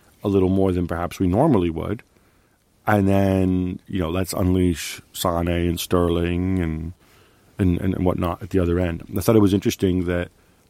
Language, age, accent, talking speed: English, 40-59, American, 175 wpm